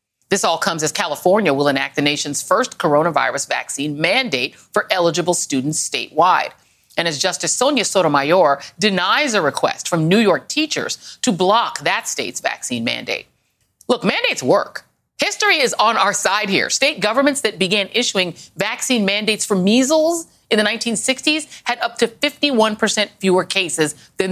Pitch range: 170-280 Hz